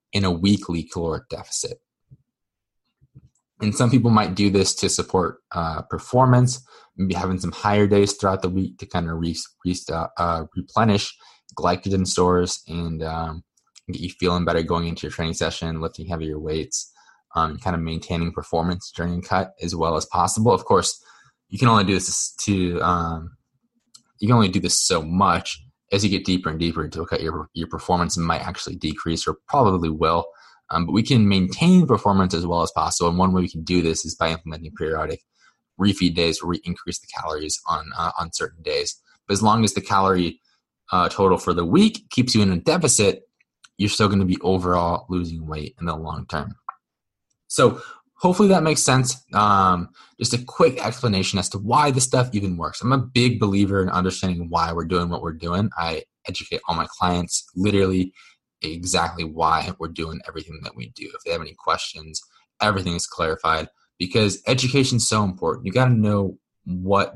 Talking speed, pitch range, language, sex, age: 190 wpm, 85-105 Hz, English, male, 20-39